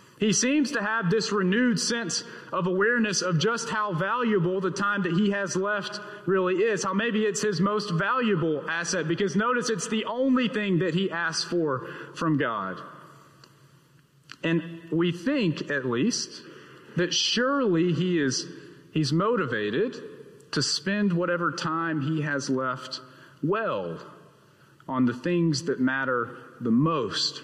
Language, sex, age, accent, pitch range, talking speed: English, male, 30-49, American, 150-205 Hz, 145 wpm